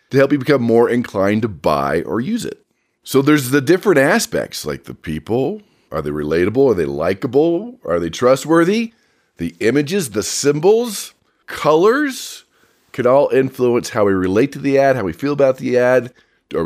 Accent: American